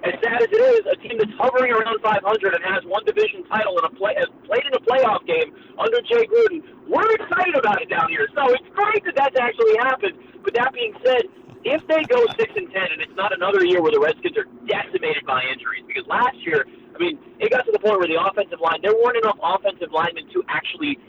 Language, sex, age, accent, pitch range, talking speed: English, male, 40-59, American, 290-455 Hz, 235 wpm